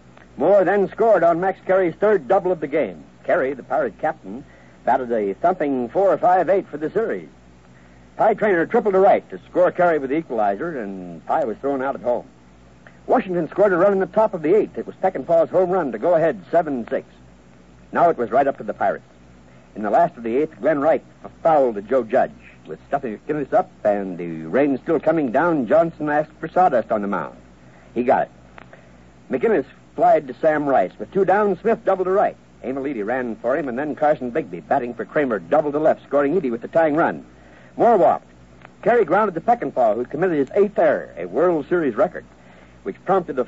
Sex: male